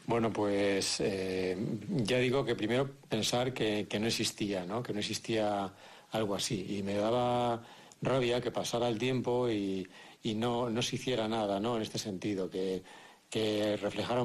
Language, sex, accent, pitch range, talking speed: Spanish, male, Spanish, 105-125 Hz, 170 wpm